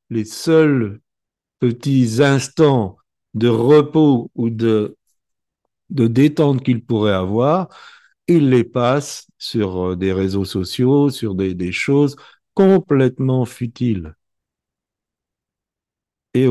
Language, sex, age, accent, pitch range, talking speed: French, male, 50-69, French, 100-140 Hz, 100 wpm